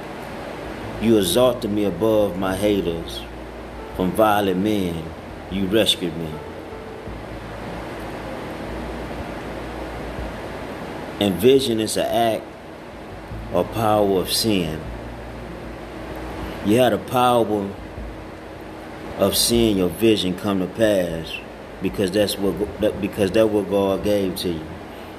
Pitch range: 80-105 Hz